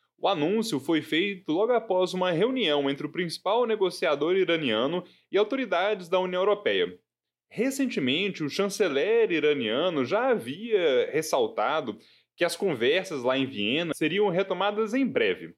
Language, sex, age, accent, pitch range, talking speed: Portuguese, male, 10-29, Brazilian, 150-225 Hz, 135 wpm